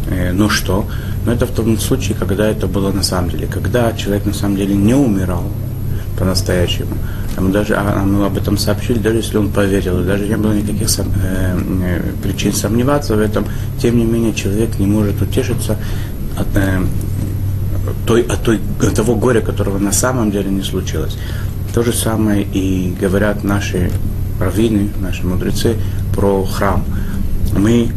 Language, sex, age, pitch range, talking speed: Russian, male, 30-49, 95-105 Hz, 160 wpm